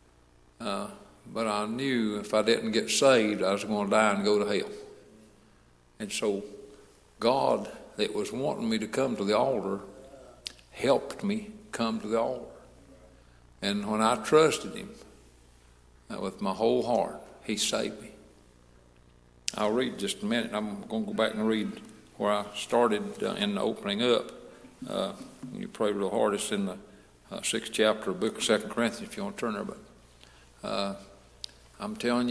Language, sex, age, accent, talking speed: English, male, 60-79, American, 180 wpm